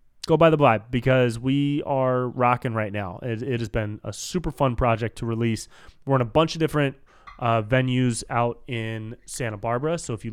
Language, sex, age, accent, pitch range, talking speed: English, male, 20-39, American, 115-140 Hz, 205 wpm